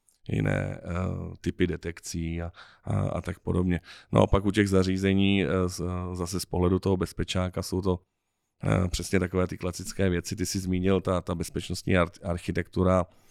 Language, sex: Czech, male